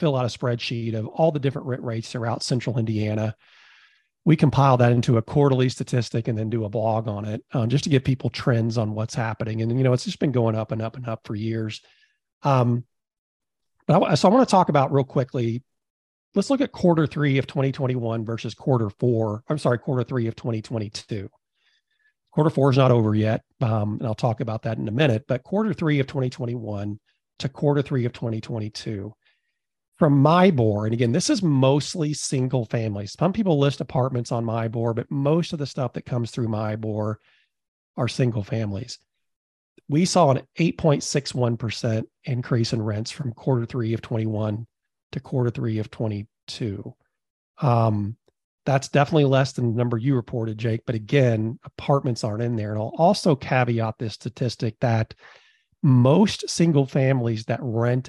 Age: 40-59